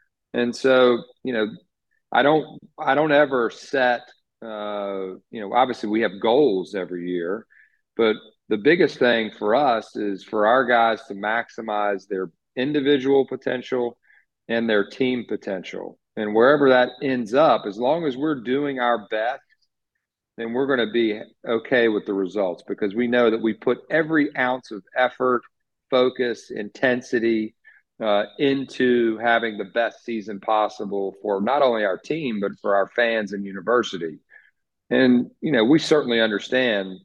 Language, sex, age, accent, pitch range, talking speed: English, male, 40-59, American, 110-135 Hz, 150 wpm